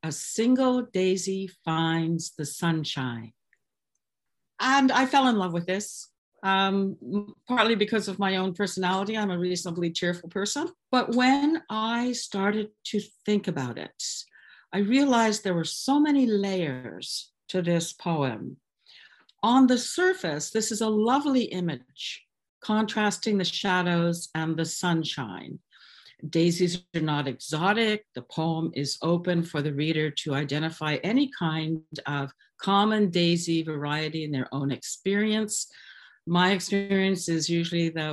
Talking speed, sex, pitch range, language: 135 wpm, female, 155-215 Hz, English